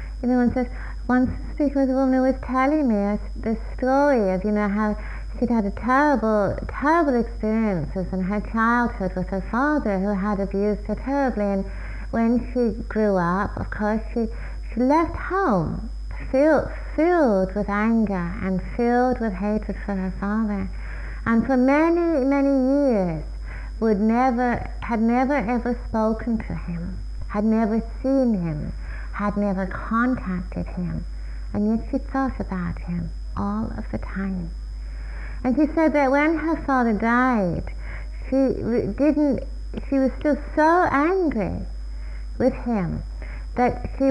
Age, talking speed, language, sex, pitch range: 30-49, 145 wpm, English, female, 195-260 Hz